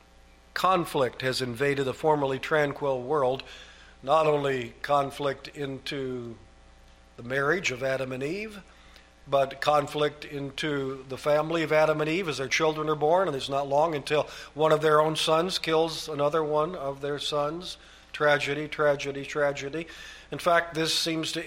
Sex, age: male, 50-69